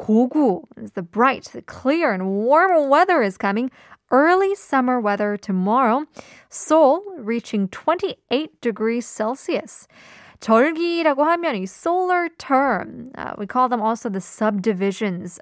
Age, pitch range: 20-39, 205-285 Hz